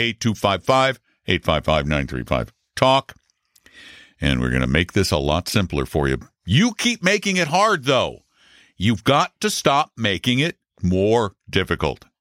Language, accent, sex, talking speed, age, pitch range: English, American, male, 130 wpm, 60-79, 105-175 Hz